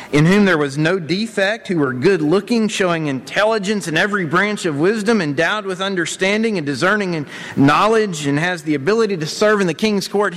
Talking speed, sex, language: 185 wpm, male, English